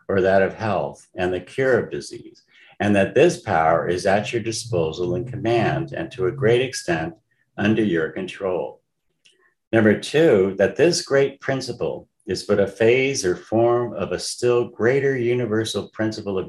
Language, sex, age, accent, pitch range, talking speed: English, male, 50-69, American, 90-120 Hz, 165 wpm